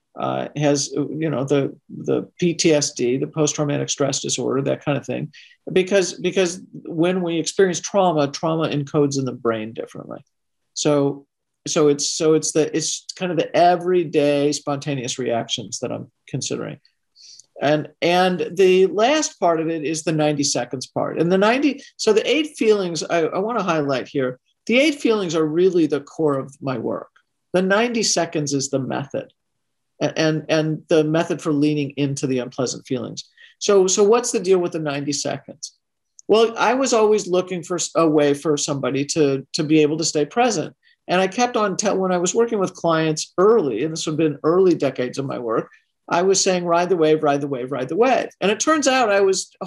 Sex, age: male, 50-69